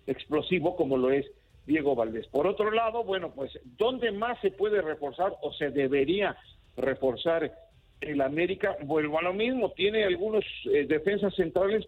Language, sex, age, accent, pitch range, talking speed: Spanish, male, 50-69, Mexican, 145-190 Hz, 155 wpm